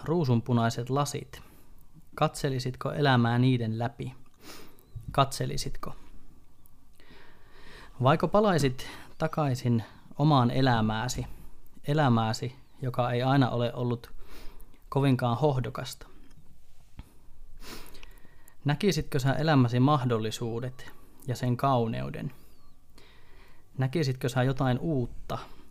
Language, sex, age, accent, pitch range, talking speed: Finnish, male, 20-39, native, 120-145 Hz, 70 wpm